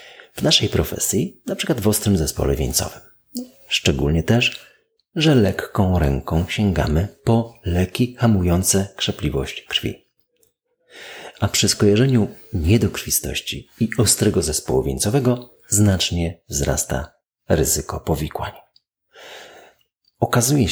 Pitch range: 80-120 Hz